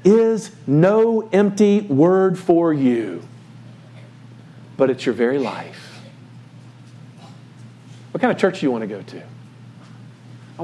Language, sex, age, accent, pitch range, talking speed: English, male, 50-69, American, 130-170 Hz, 125 wpm